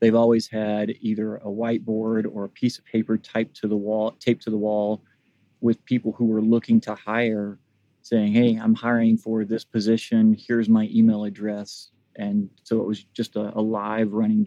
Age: 30-49